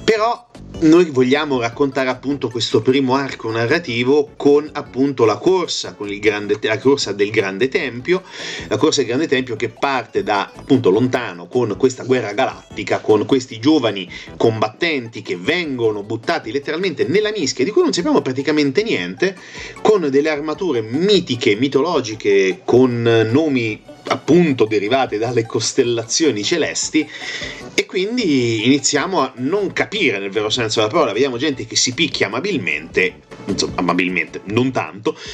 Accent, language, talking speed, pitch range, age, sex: native, Italian, 145 wpm, 120-200 Hz, 30-49, male